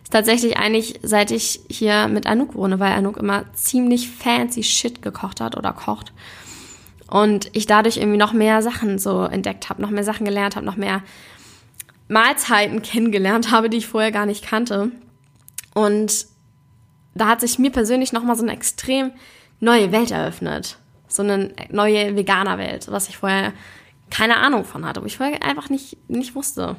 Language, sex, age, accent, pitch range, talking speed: German, female, 10-29, German, 200-245 Hz, 165 wpm